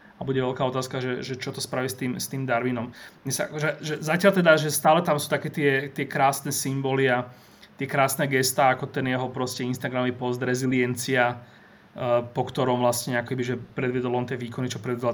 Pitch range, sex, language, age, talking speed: 125-140 Hz, male, Slovak, 30-49, 180 wpm